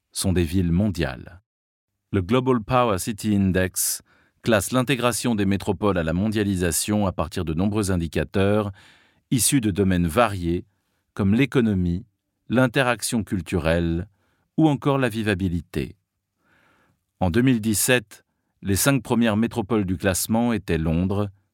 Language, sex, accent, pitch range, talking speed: French, male, French, 90-120 Hz, 120 wpm